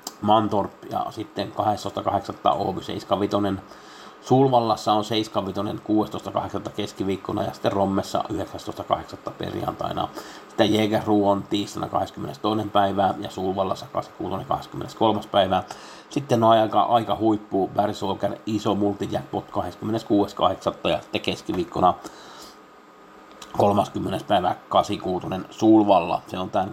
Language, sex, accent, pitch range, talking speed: Finnish, male, native, 100-110 Hz, 105 wpm